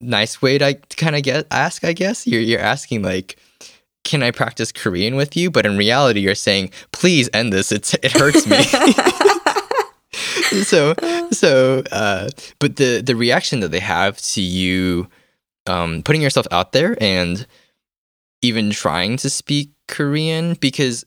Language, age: English, 10-29